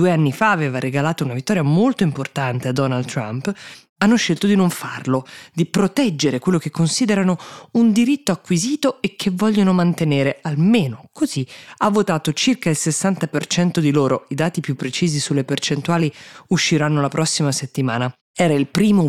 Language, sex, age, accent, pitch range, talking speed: Italian, female, 20-39, native, 135-180 Hz, 165 wpm